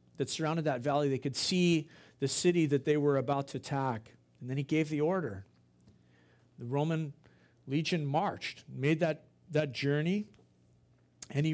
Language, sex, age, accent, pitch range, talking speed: English, male, 50-69, American, 130-165 Hz, 155 wpm